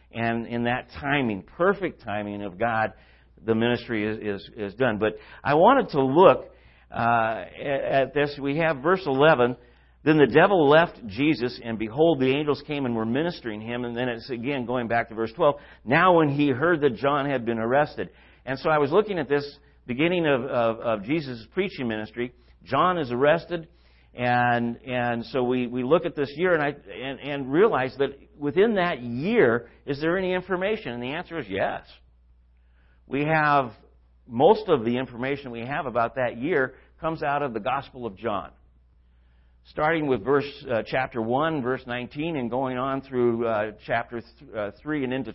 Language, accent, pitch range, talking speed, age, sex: English, American, 115-145 Hz, 185 wpm, 50-69, male